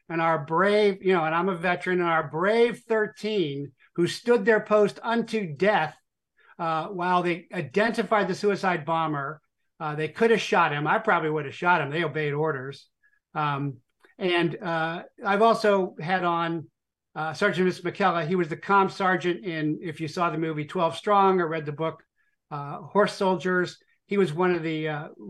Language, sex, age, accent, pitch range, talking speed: English, male, 50-69, American, 160-200 Hz, 185 wpm